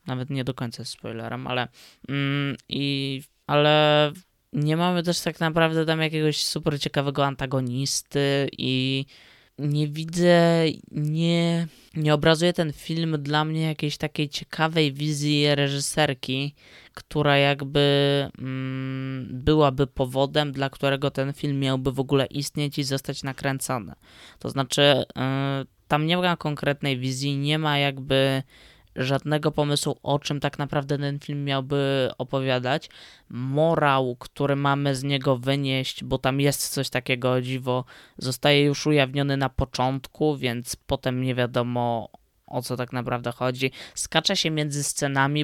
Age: 20-39